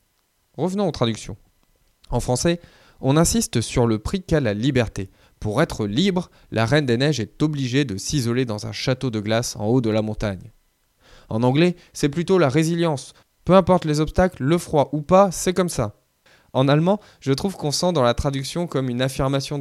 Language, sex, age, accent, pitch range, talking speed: French, male, 20-39, French, 115-160 Hz, 195 wpm